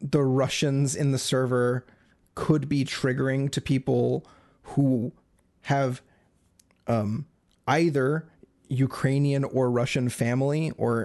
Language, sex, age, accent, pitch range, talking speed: English, male, 30-49, American, 120-145 Hz, 105 wpm